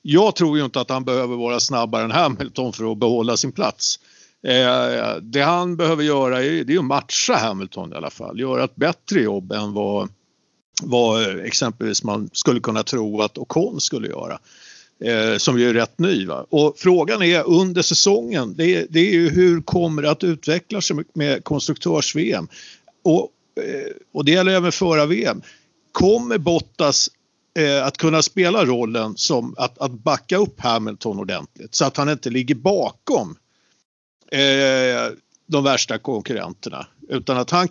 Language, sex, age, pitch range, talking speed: Swedish, male, 50-69, 130-170 Hz, 160 wpm